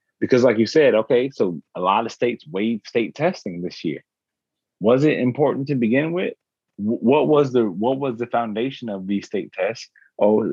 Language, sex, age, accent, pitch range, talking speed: English, male, 30-49, American, 105-130 Hz, 190 wpm